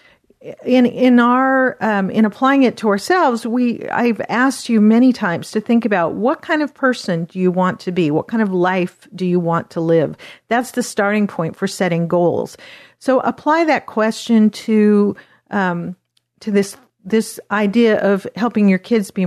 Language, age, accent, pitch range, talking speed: English, 50-69, American, 185-235 Hz, 180 wpm